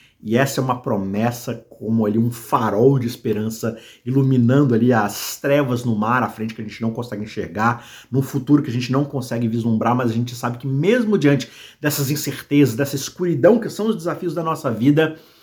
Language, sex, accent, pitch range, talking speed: Portuguese, male, Brazilian, 110-145 Hz, 200 wpm